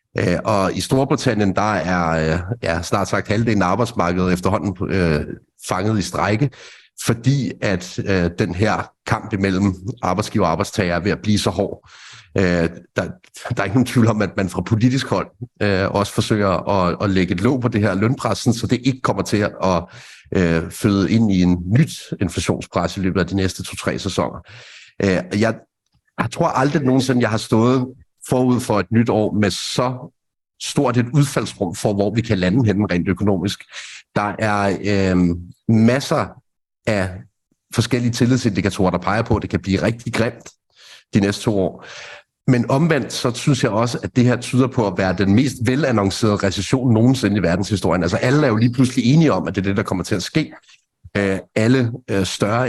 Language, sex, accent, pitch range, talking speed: Danish, male, native, 95-125 Hz, 185 wpm